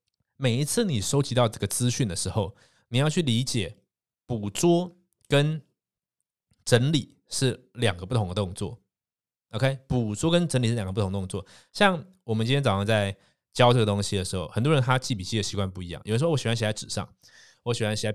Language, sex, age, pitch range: Chinese, male, 20-39, 100-135 Hz